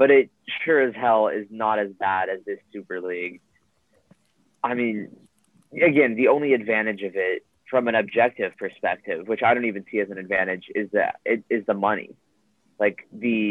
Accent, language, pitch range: American, English, 100-130 Hz